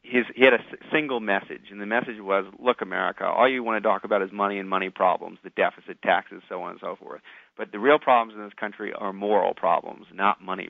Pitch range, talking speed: 105-125 Hz, 240 wpm